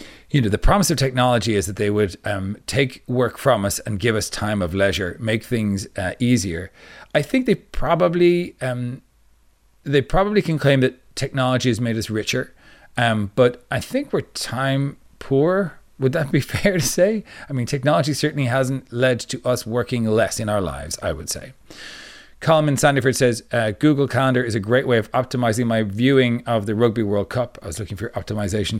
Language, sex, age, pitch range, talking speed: English, male, 40-59, 105-135 Hz, 195 wpm